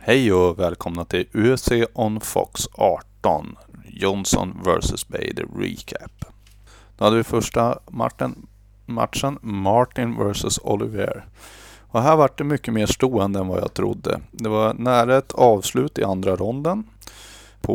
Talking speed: 140 wpm